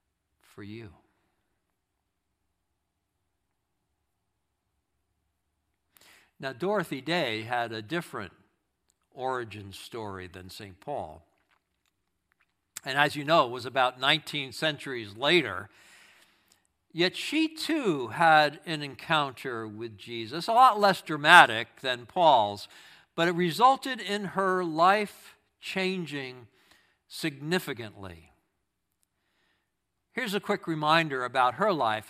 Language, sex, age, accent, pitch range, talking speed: English, male, 60-79, American, 105-170 Hz, 95 wpm